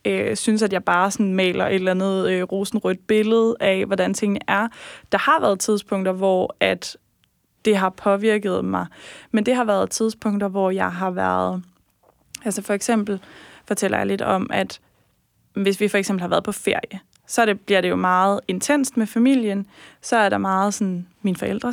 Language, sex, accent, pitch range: Danish, female, native, 195-225 Hz